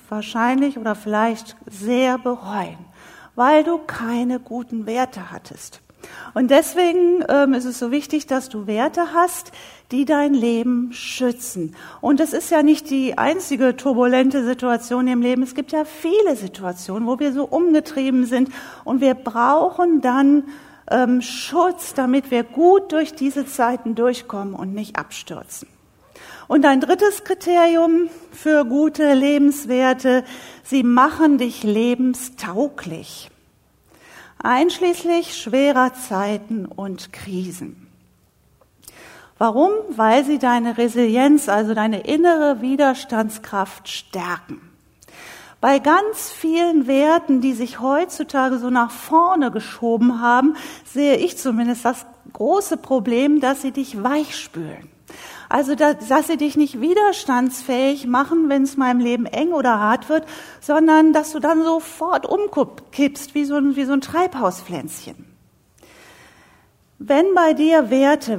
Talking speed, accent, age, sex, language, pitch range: 125 wpm, German, 50-69, female, German, 240-305 Hz